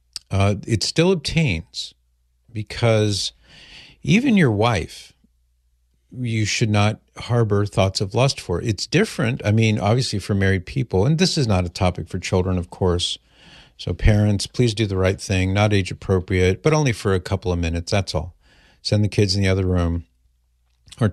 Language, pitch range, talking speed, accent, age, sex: English, 90-115 Hz, 170 wpm, American, 50-69, male